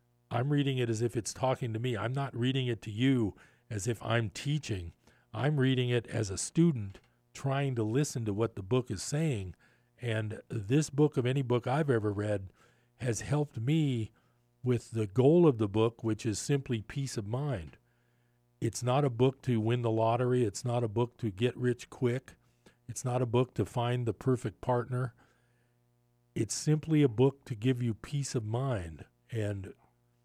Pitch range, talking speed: 110-130 Hz, 185 wpm